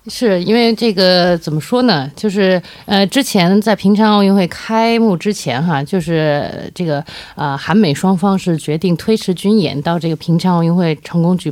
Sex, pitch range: female, 150-190 Hz